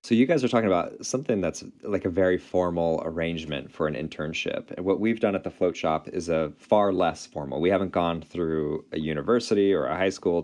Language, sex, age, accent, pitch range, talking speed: English, male, 30-49, American, 80-110 Hz, 225 wpm